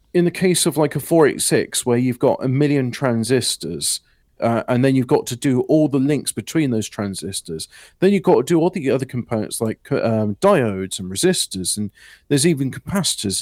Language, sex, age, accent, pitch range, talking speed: English, male, 40-59, British, 115-170 Hz, 195 wpm